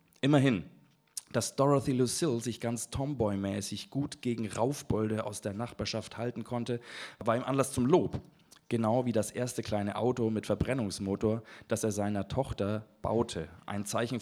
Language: German